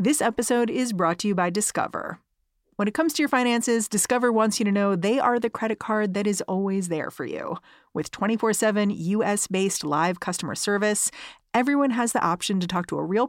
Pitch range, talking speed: 185-240 Hz, 205 wpm